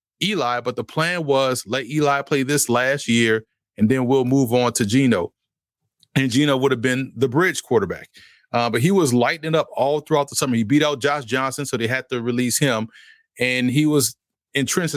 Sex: male